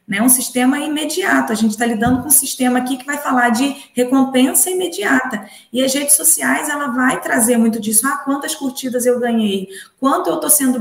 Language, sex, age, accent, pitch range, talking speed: Portuguese, female, 20-39, Brazilian, 220-255 Hz, 200 wpm